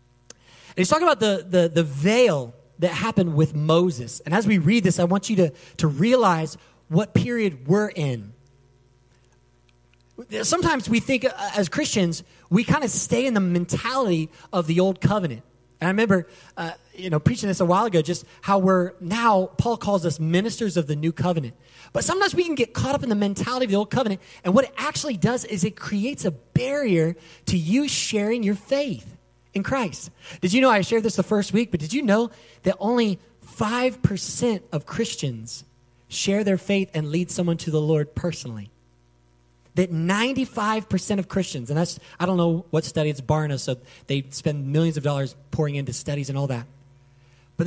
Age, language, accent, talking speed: 30-49, English, American, 190 wpm